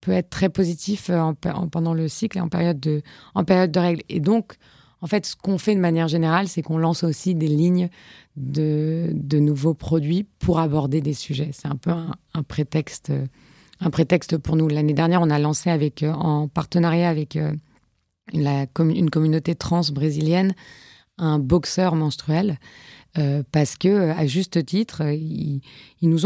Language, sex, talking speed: French, female, 165 wpm